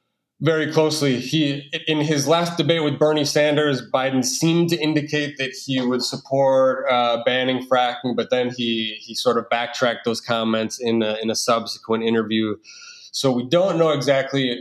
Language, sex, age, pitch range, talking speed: English, male, 20-39, 115-140 Hz, 170 wpm